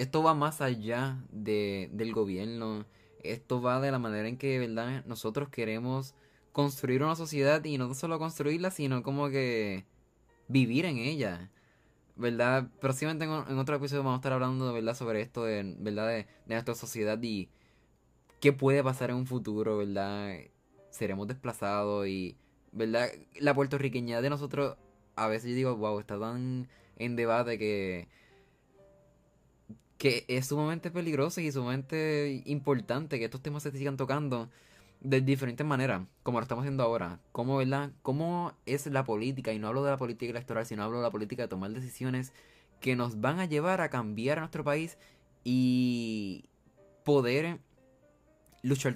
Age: 20-39